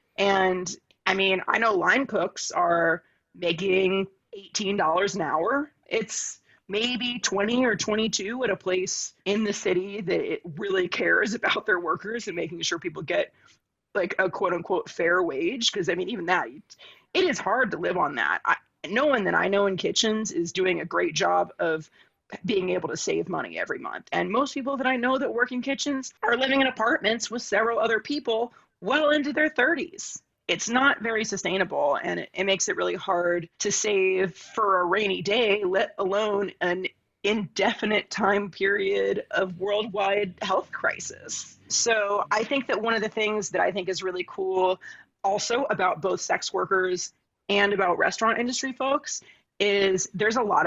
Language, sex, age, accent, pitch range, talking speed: English, female, 30-49, American, 190-245 Hz, 175 wpm